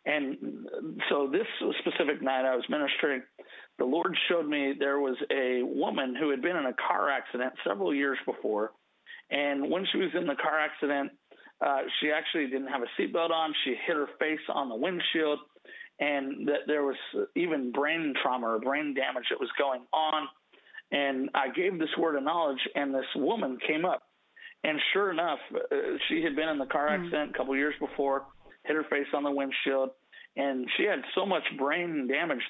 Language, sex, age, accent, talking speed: English, male, 50-69, American, 190 wpm